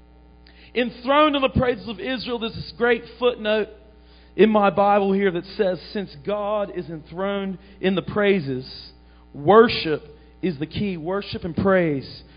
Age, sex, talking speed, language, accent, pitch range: 40-59, male, 145 wpm, English, American, 155-240 Hz